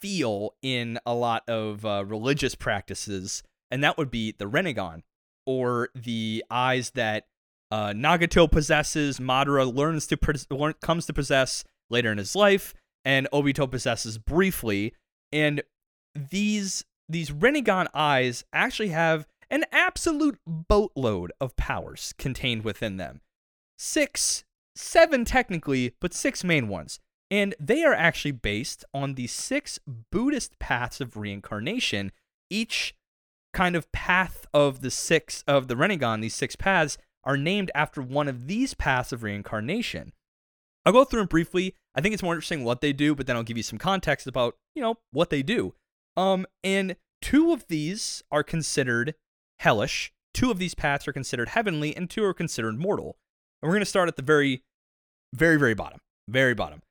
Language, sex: English, male